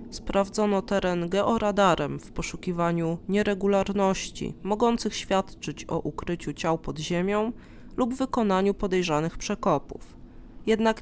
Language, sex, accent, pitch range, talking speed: Polish, female, native, 170-215 Hz, 100 wpm